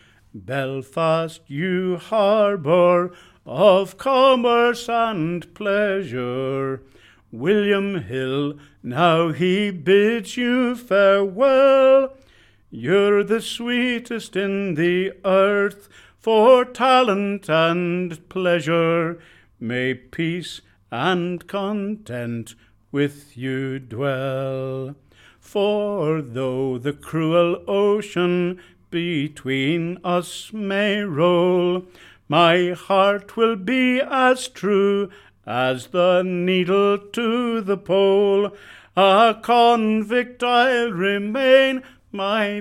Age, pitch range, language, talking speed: 60-79, 140-205 Hz, English, 80 wpm